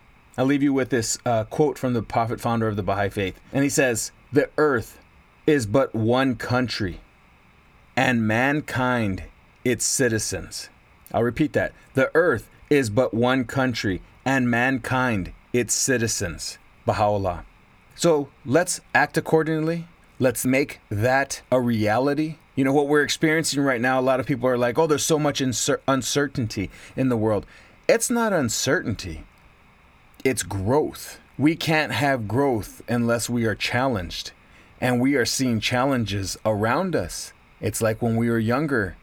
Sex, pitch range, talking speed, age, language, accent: male, 105-135 Hz, 150 wpm, 30-49, English, American